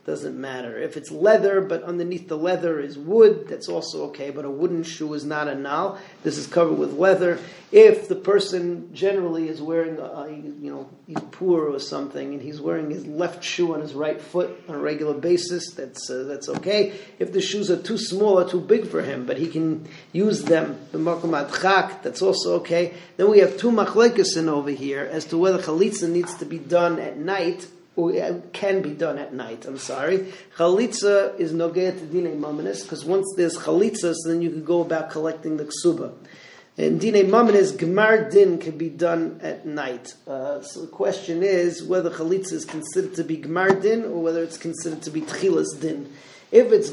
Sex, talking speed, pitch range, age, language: male, 200 wpm, 160-195 Hz, 40-59, English